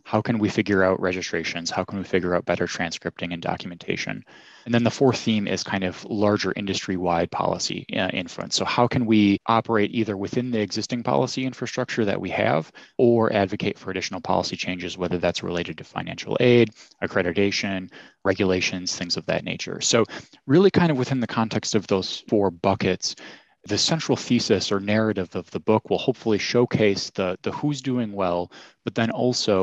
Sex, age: male, 20-39